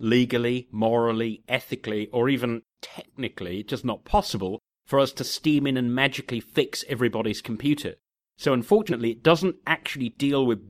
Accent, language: British, English